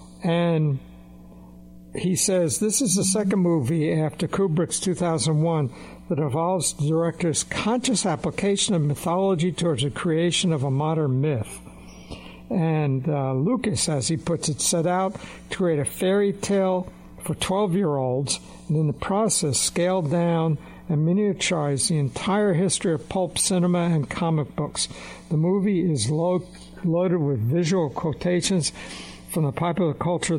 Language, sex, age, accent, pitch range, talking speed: English, male, 60-79, American, 140-180 Hz, 140 wpm